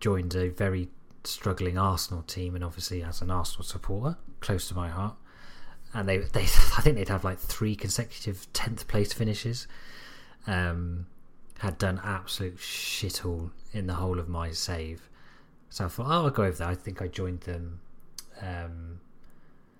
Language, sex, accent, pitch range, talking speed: English, male, British, 90-105 Hz, 165 wpm